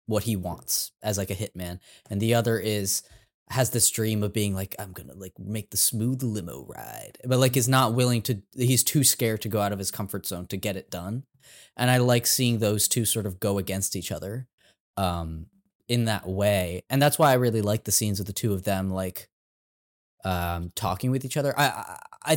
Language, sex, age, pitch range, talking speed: English, male, 10-29, 95-130 Hz, 225 wpm